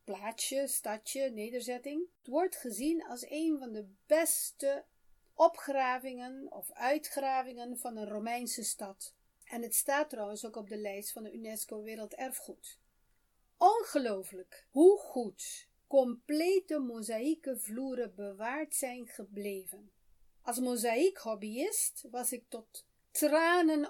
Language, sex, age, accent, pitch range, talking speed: Dutch, female, 40-59, Dutch, 215-285 Hz, 115 wpm